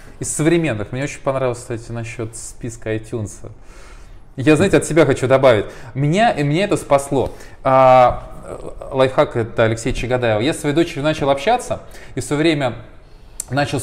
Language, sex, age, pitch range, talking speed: Russian, male, 20-39, 125-160 Hz, 155 wpm